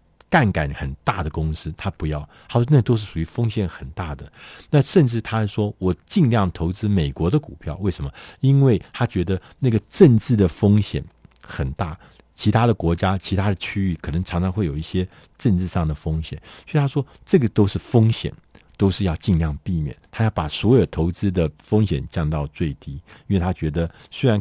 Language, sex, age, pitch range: Chinese, male, 50-69, 80-105 Hz